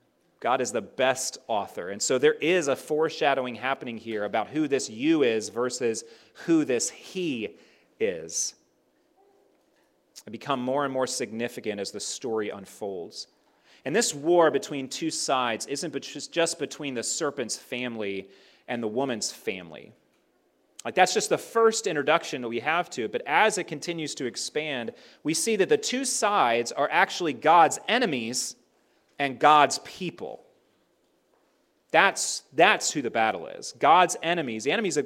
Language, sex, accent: English, male, American